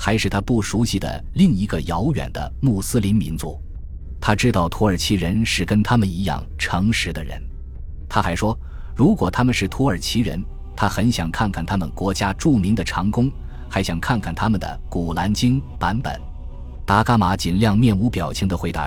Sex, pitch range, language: male, 80-110 Hz, Chinese